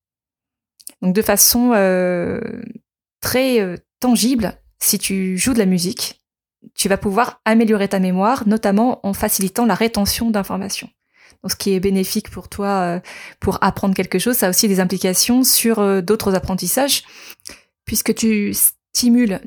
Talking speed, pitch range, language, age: 150 wpm, 195-230 Hz, French, 20-39